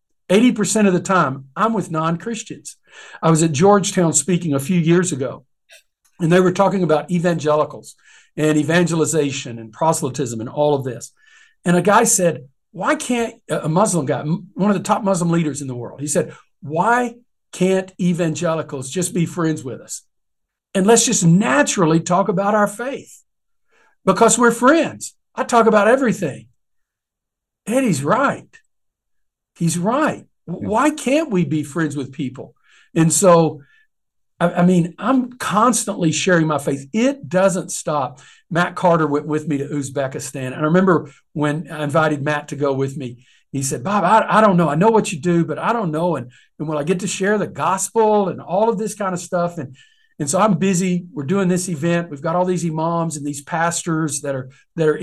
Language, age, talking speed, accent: English, 60-79, 185 wpm, American